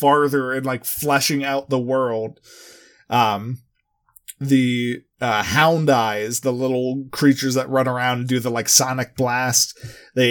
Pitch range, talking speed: 125-140 Hz, 145 wpm